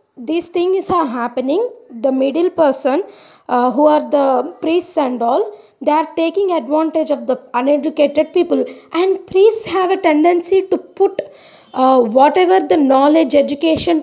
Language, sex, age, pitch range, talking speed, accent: English, female, 20-39, 280-355 Hz, 145 wpm, Indian